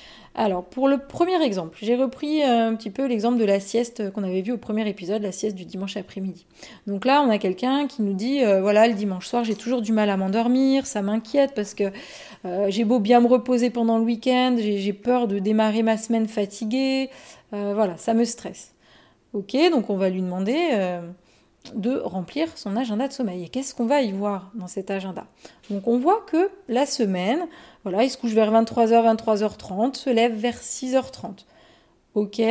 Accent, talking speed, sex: French, 205 wpm, female